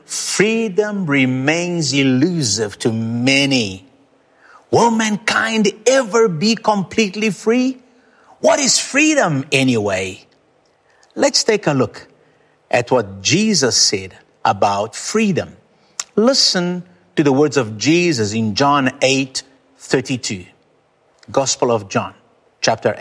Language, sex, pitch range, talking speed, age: English, male, 140-235 Hz, 100 wpm, 50-69